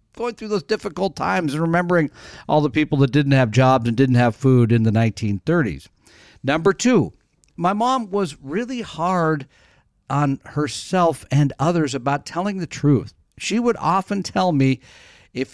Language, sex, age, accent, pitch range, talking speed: English, male, 50-69, American, 125-175 Hz, 160 wpm